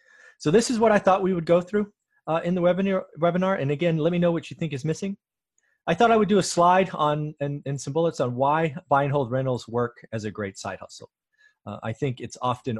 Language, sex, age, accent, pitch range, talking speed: English, male, 30-49, American, 115-165 Hz, 255 wpm